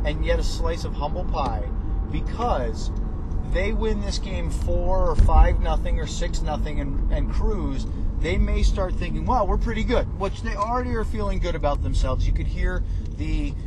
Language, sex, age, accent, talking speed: English, male, 30-49, American, 185 wpm